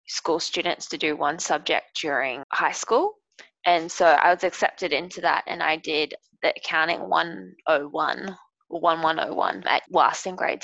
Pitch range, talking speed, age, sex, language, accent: 165-190 Hz, 145 wpm, 20-39, female, English, Australian